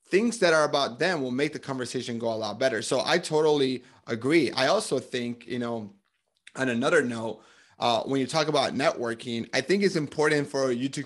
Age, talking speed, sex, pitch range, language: 30-49, 205 wpm, male, 125-150 Hz, English